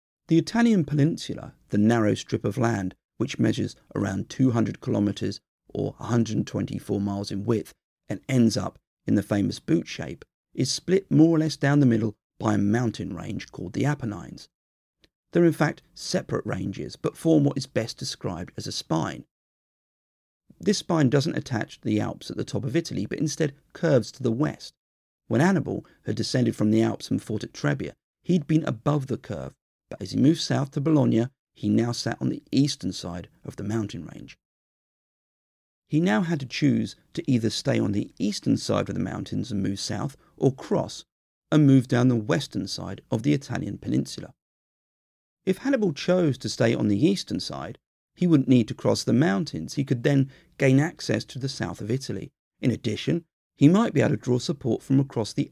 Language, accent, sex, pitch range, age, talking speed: English, British, male, 105-150 Hz, 40-59, 190 wpm